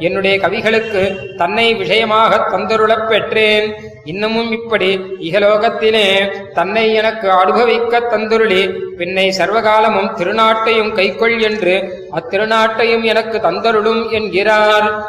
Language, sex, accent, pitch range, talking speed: Tamil, male, native, 190-225 Hz, 90 wpm